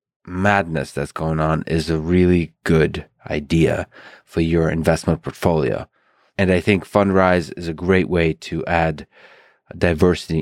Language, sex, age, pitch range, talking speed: English, male, 30-49, 80-95 Hz, 140 wpm